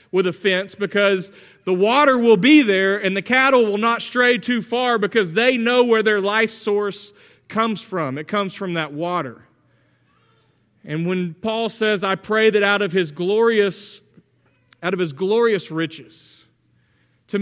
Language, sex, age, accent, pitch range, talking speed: English, male, 40-59, American, 160-220 Hz, 165 wpm